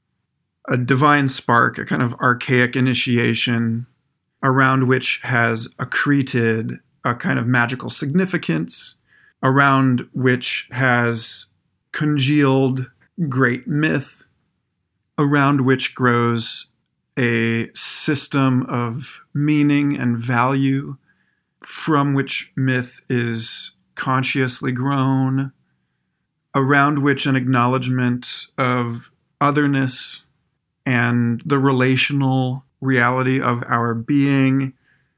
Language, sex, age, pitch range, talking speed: English, male, 40-59, 120-140 Hz, 85 wpm